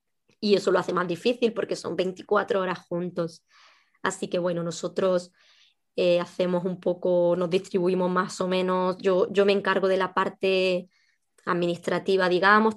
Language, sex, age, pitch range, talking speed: Spanish, male, 20-39, 185-205 Hz, 155 wpm